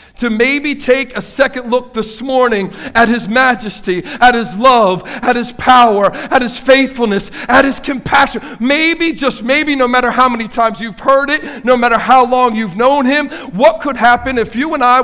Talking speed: 190 wpm